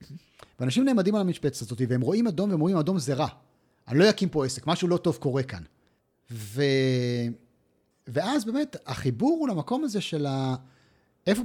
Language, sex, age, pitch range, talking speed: Hebrew, male, 40-59, 125-190 Hz, 175 wpm